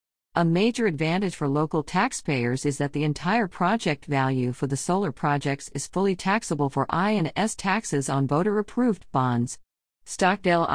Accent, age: American, 50-69